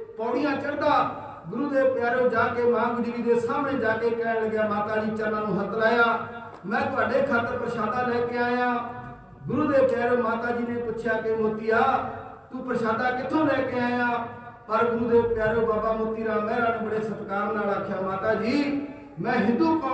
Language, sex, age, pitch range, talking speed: Punjabi, male, 40-59, 225-260 Hz, 95 wpm